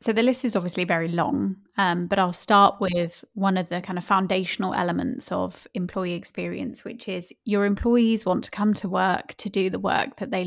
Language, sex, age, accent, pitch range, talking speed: English, female, 10-29, British, 185-215 Hz, 210 wpm